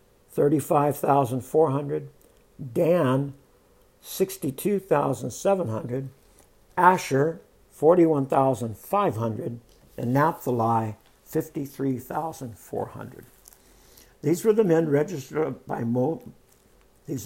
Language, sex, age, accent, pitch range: English, male, 60-79, American, 125-160 Hz